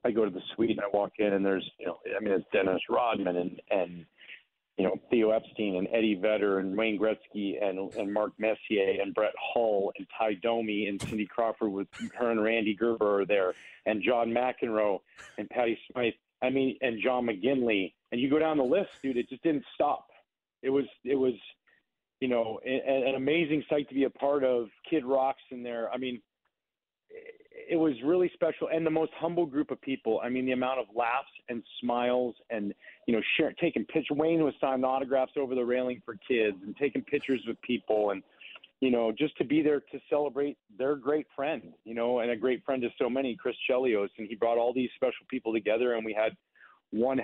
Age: 40-59